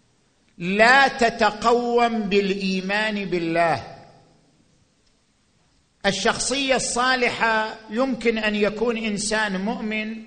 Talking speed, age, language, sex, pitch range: 65 wpm, 50-69, Arabic, male, 215-255 Hz